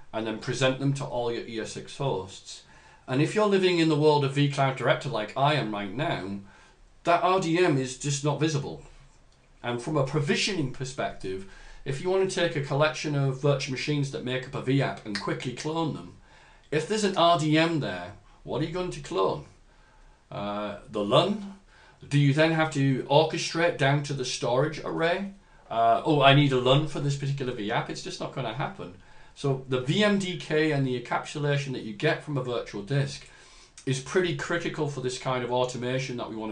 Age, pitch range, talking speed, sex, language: 40-59, 120-155 Hz, 195 wpm, male, English